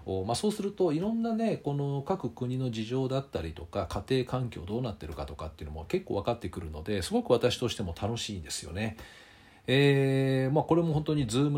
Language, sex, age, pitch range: Japanese, male, 40-59, 90-135 Hz